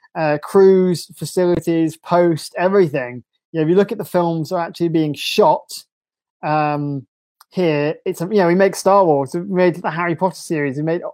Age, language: 30-49, English